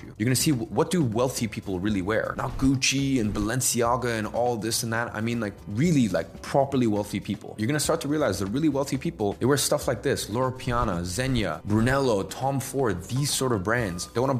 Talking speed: 230 wpm